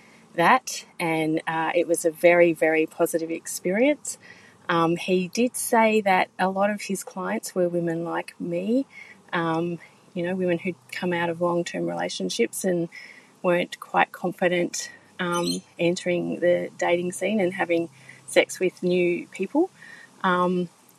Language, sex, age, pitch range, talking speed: English, female, 30-49, 170-195 Hz, 145 wpm